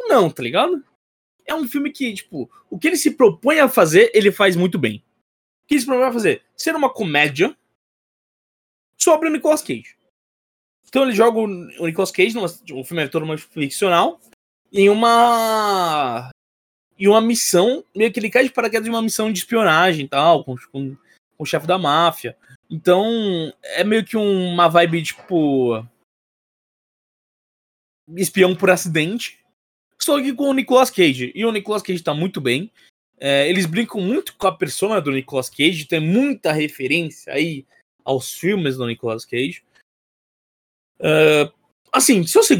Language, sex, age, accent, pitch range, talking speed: Portuguese, male, 20-39, Brazilian, 155-235 Hz, 160 wpm